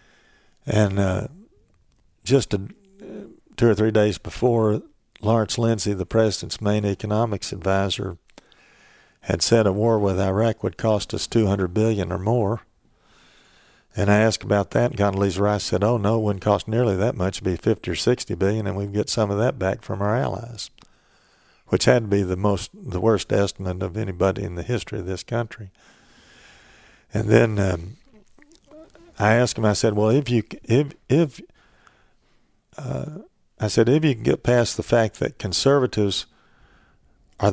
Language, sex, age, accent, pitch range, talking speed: English, male, 50-69, American, 100-115 Hz, 170 wpm